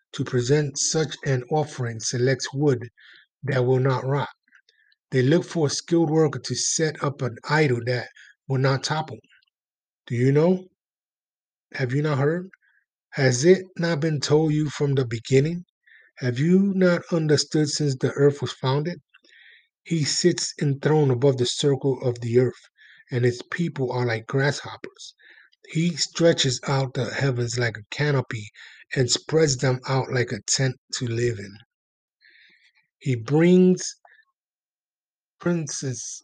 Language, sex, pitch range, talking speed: English, male, 130-160 Hz, 145 wpm